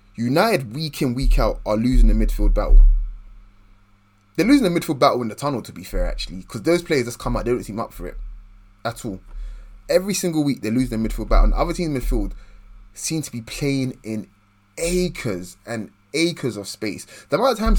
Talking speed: 215 wpm